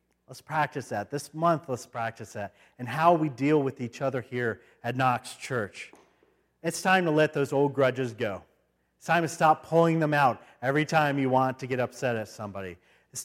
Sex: male